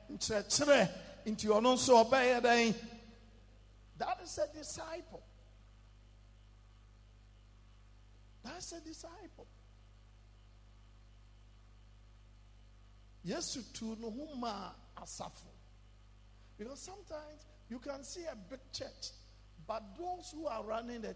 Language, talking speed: English, 70 wpm